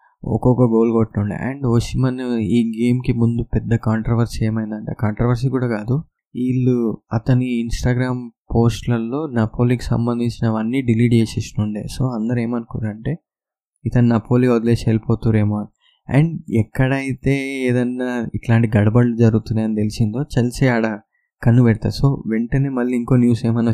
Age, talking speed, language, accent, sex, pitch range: 20-39, 130 wpm, Telugu, native, male, 115-130 Hz